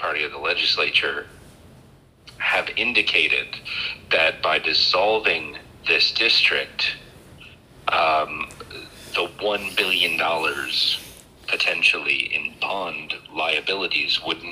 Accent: American